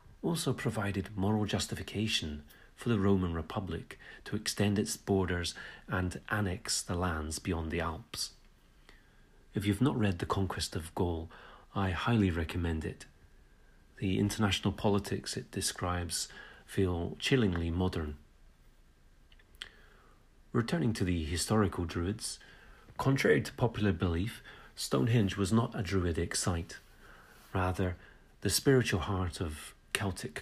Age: 40-59